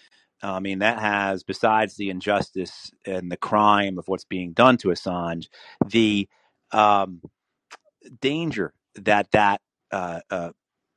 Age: 40-59